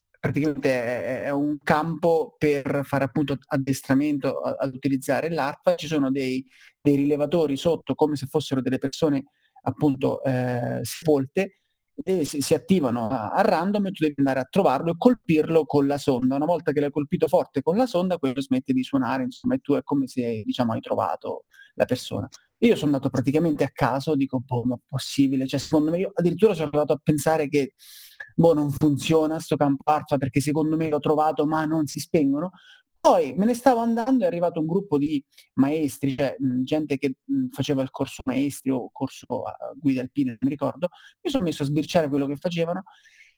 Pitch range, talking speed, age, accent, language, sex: 140-185 Hz, 190 wpm, 30-49, native, Italian, male